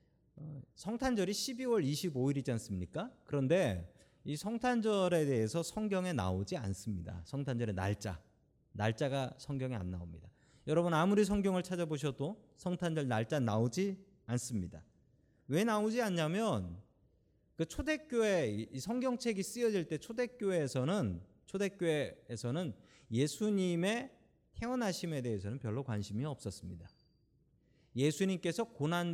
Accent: native